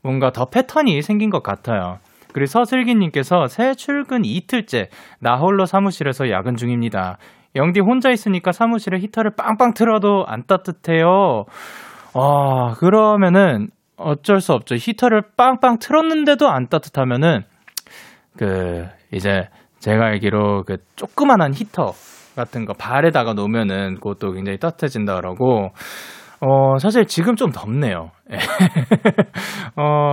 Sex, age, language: male, 20-39, Korean